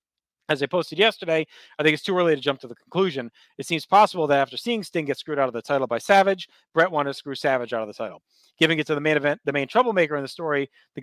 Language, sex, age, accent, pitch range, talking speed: English, male, 30-49, American, 125-160 Hz, 280 wpm